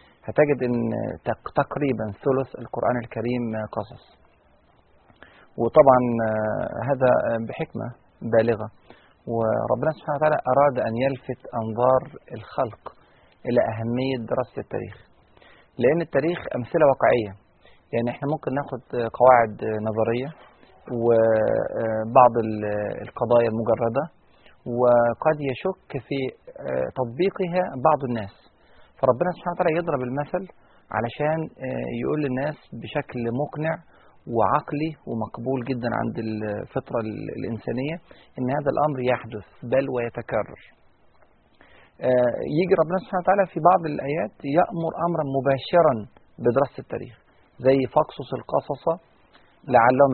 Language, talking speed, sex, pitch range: Arabic, 95 wpm, male, 115-150 Hz